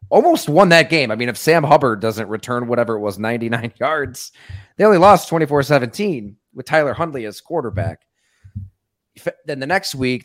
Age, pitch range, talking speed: 30-49, 105-135 Hz, 170 wpm